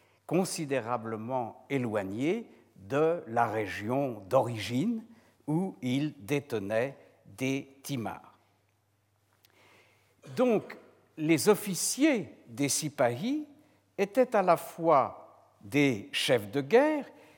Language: French